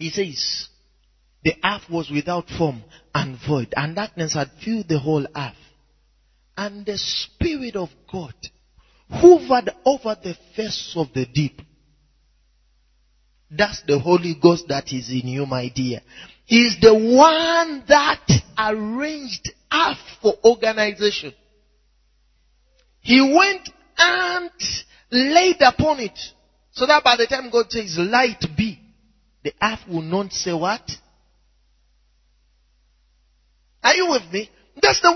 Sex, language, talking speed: male, English, 125 wpm